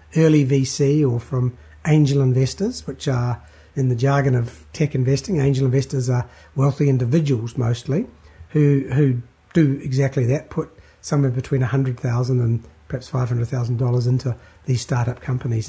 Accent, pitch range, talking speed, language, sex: Australian, 125-155 Hz, 155 wpm, English, male